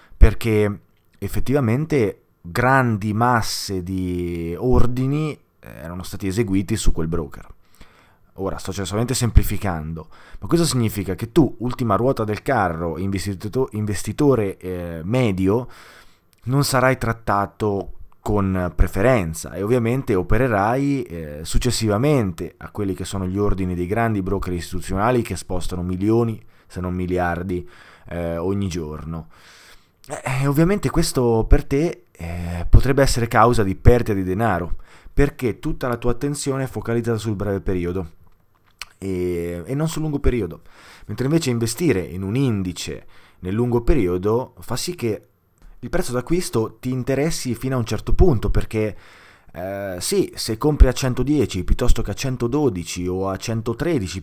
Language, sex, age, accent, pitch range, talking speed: Italian, male, 20-39, native, 90-125 Hz, 135 wpm